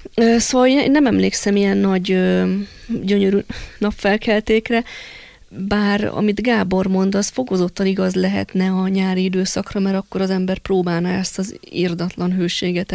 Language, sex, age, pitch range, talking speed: Hungarian, female, 20-39, 180-200 Hz, 130 wpm